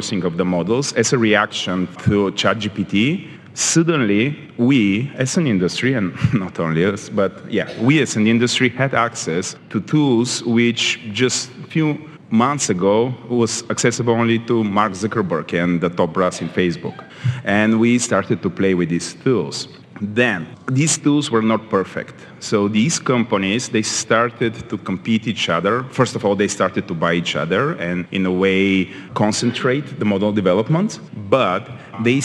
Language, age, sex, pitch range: English, 40-59, male, 105-130 Hz